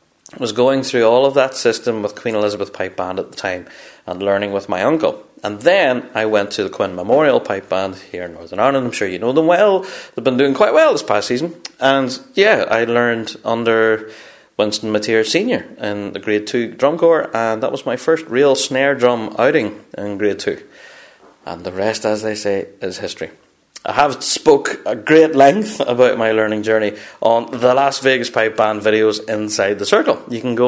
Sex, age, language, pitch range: male, 30-49, English, 105-140 Hz